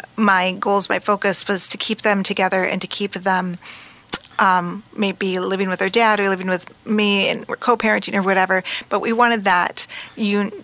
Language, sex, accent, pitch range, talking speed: English, female, American, 185-210 Hz, 190 wpm